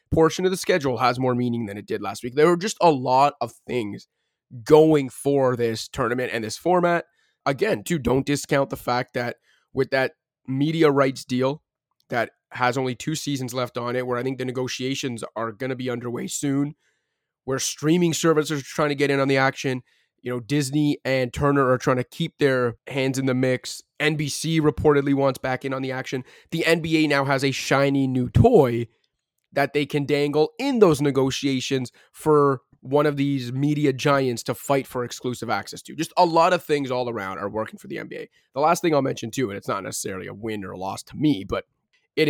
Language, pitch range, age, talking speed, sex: English, 125-150 Hz, 20-39, 210 wpm, male